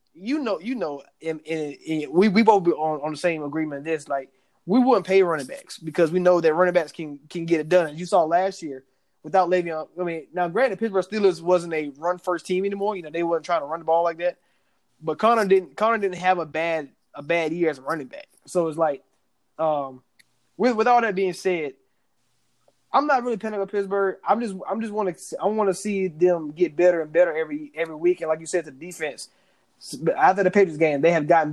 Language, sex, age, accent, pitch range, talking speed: English, male, 20-39, American, 150-190 Hz, 245 wpm